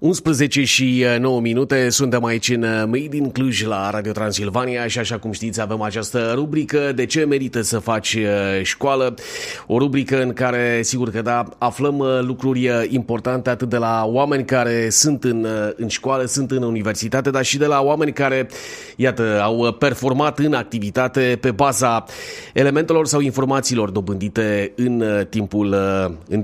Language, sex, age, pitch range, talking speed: Romanian, male, 30-49, 110-135 Hz, 155 wpm